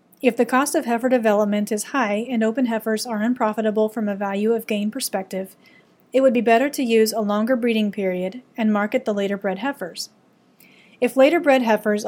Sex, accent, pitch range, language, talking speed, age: female, American, 205-245 Hz, English, 185 wpm, 30-49